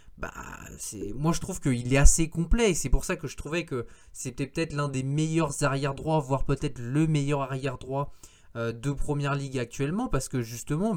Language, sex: French, male